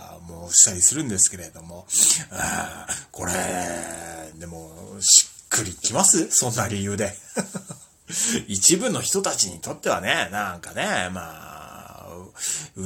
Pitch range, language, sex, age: 90-150 Hz, Japanese, male, 30-49